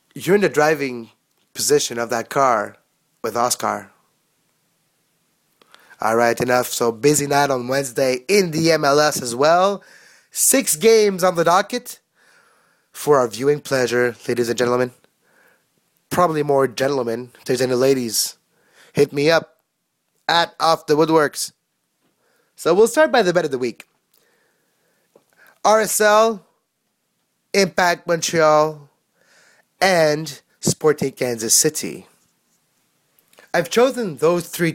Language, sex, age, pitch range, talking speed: English, male, 20-39, 125-175 Hz, 120 wpm